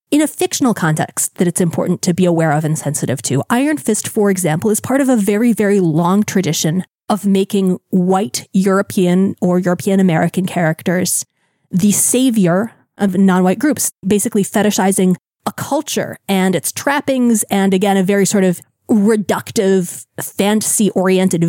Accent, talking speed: American, 150 wpm